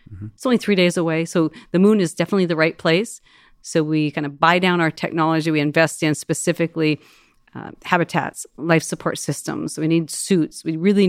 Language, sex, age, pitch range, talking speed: English, female, 40-59, 150-175 Hz, 195 wpm